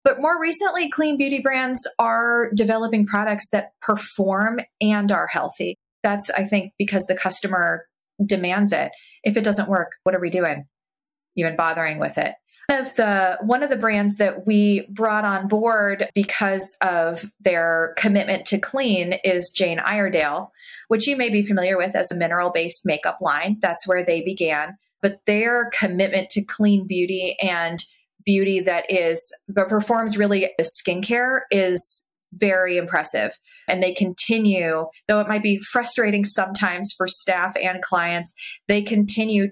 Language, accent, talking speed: English, American, 150 wpm